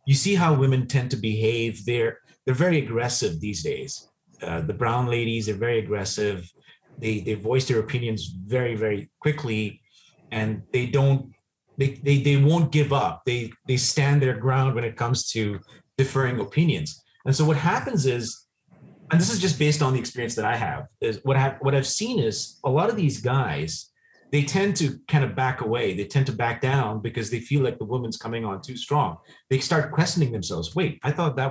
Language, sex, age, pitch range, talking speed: English, male, 30-49, 115-145 Hz, 205 wpm